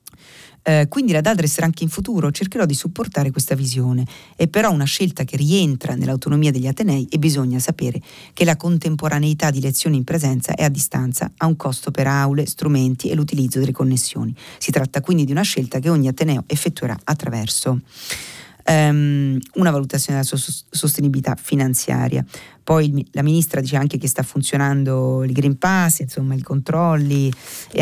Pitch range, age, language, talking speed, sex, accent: 135-160 Hz, 40-59, Italian, 160 wpm, female, native